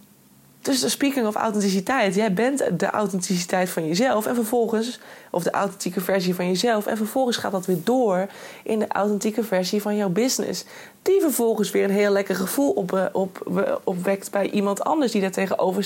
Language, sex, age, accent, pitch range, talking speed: Dutch, female, 20-39, Dutch, 185-230 Hz, 185 wpm